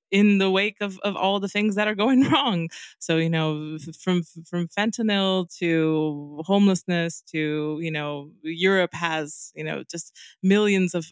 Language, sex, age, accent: English, female, 20-39, American